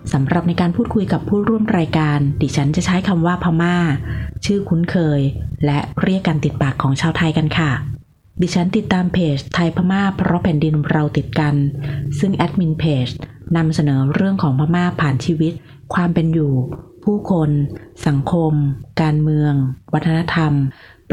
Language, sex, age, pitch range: Thai, female, 20-39, 145-175 Hz